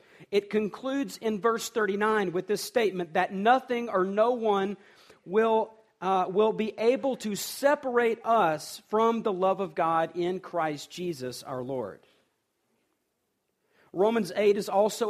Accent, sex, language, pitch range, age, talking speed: American, male, English, 160-220 Hz, 40-59, 140 wpm